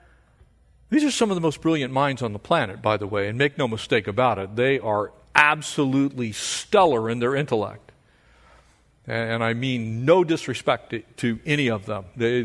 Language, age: English, 40-59